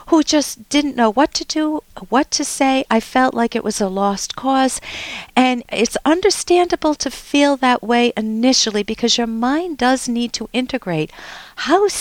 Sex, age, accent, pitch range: female, 50-69, American, 220-315 Hz